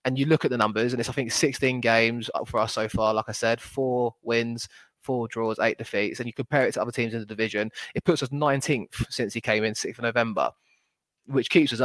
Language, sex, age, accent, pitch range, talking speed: English, male, 20-39, British, 110-130 Hz, 250 wpm